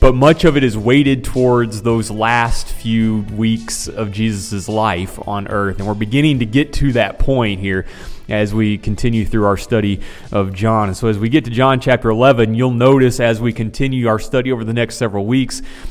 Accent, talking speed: American, 205 wpm